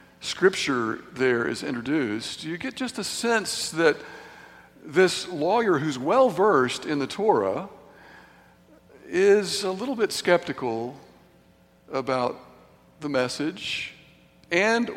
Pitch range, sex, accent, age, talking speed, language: 130-215 Hz, male, American, 60-79, 105 wpm, English